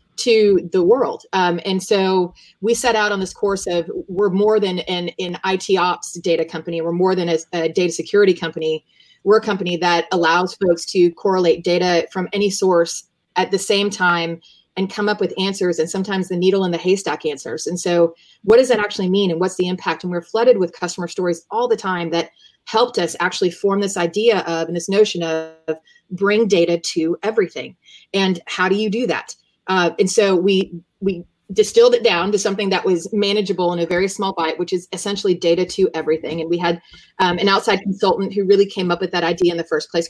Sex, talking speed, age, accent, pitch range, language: female, 215 wpm, 30-49, American, 175-205 Hz, English